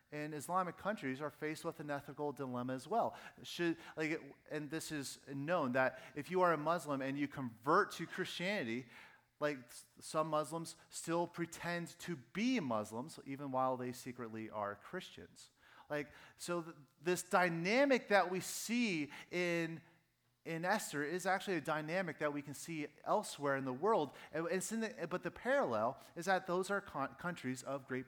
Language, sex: English, male